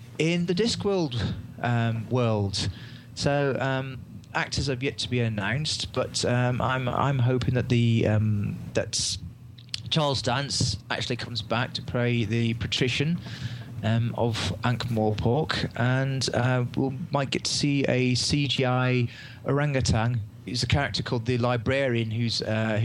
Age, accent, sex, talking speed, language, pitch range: 30-49, British, male, 140 wpm, English, 110-135 Hz